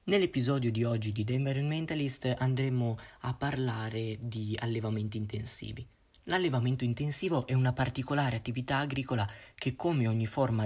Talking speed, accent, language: 130 wpm, native, Italian